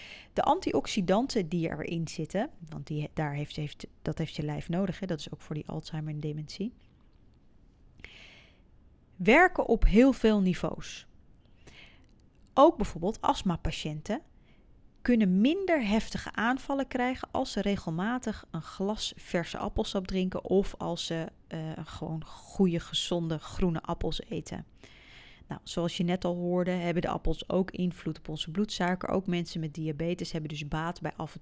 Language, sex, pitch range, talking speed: Dutch, female, 165-205 Hz, 140 wpm